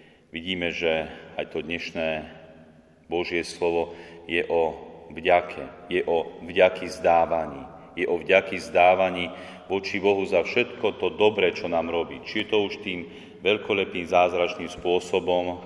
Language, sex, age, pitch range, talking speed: Slovak, male, 40-59, 80-95 Hz, 135 wpm